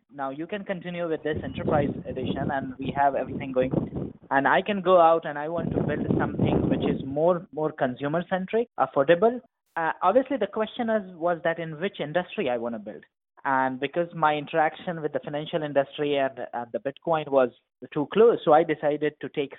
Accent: Indian